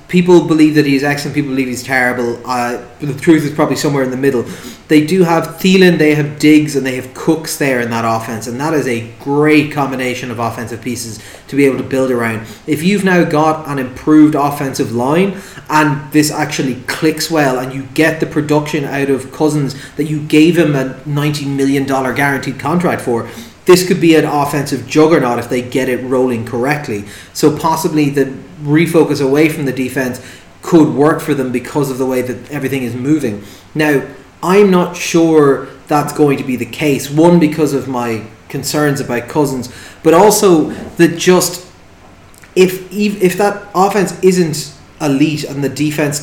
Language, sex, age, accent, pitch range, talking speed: English, male, 30-49, Irish, 130-155 Hz, 185 wpm